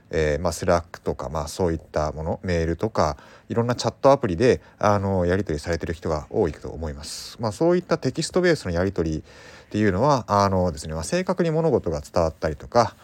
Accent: native